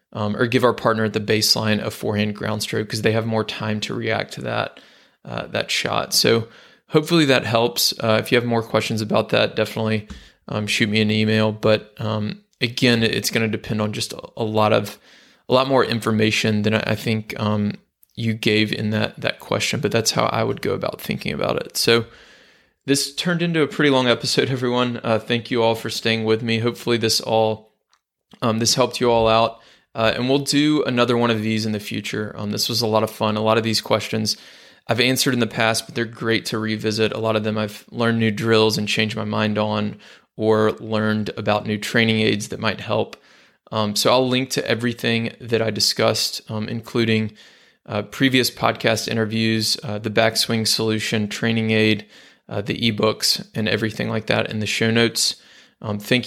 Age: 20-39